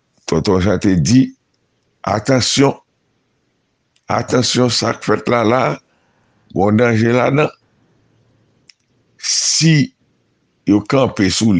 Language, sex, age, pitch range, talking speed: French, male, 60-79, 90-115 Hz, 95 wpm